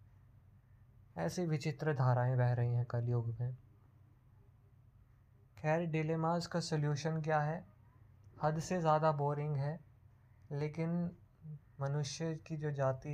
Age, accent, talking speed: 20-39, native, 110 wpm